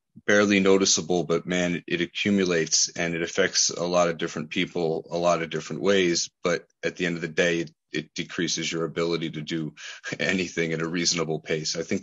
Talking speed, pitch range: 200 wpm, 80-95 Hz